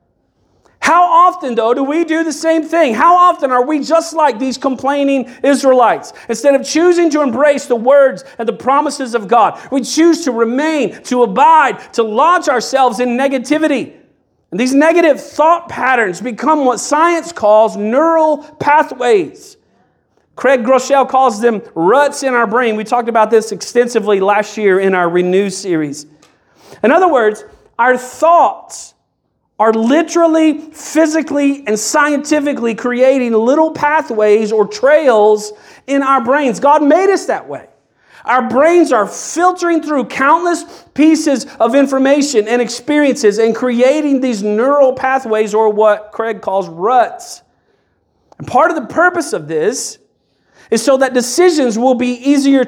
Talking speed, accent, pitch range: 145 wpm, American, 235-310 Hz